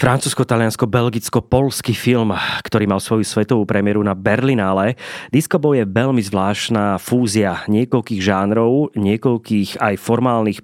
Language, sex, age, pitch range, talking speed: Slovak, male, 30-49, 105-130 Hz, 115 wpm